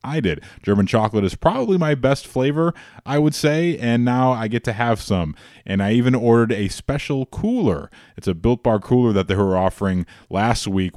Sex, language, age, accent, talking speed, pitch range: male, English, 20-39, American, 205 wpm, 95-110 Hz